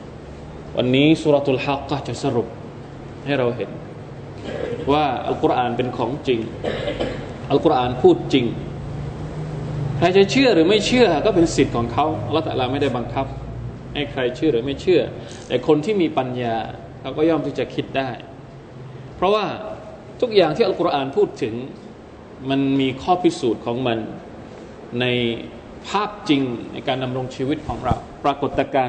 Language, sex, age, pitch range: Thai, male, 20-39, 120-160 Hz